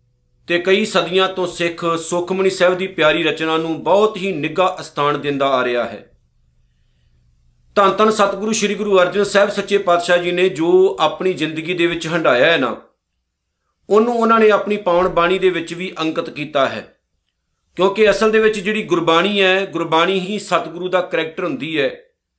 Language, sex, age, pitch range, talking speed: Punjabi, male, 50-69, 160-200 Hz, 155 wpm